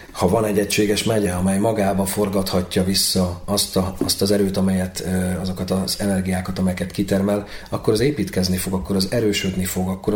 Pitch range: 95-100 Hz